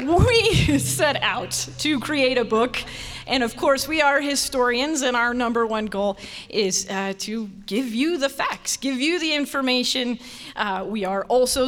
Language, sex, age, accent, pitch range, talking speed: English, female, 30-49, American, 200-270 Hz, 170 wpm